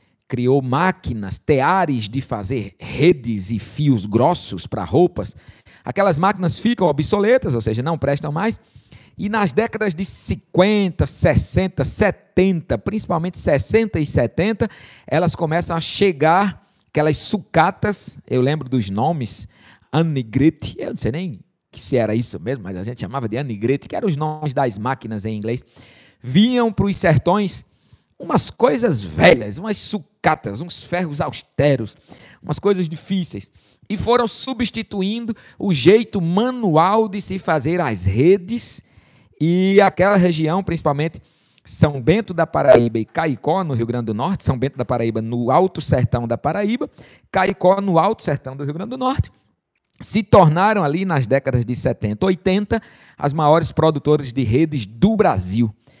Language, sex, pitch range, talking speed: Portuguese, male, 125-190 Hz, 150 wpm